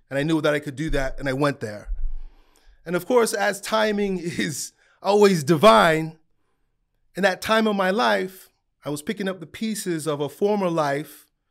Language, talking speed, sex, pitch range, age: English, 190 wpm, male, 140-200 Hz, 30-49